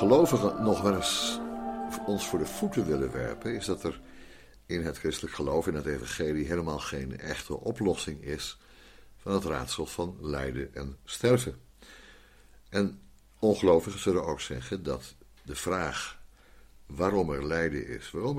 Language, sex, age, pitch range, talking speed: Dutch, male, 60-79, 65-100 Hz, 145 wpm